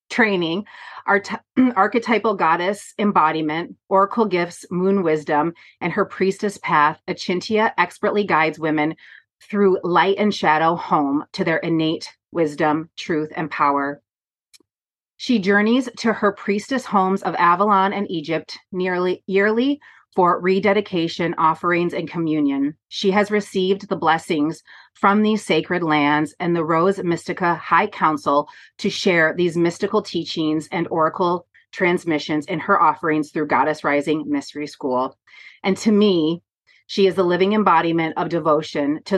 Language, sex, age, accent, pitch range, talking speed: English, female, 30-49, American, 160-200 Hz, 135 wpm